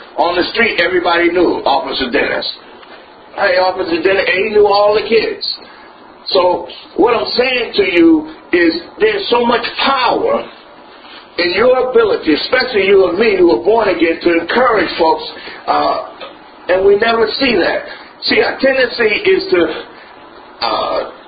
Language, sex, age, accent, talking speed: English, male, 50-69, American, 145 wpm